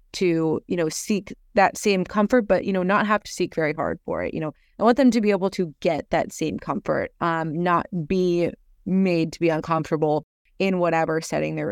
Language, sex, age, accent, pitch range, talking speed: English, female, 20-39, American, 160-195 Hz, 215 wpm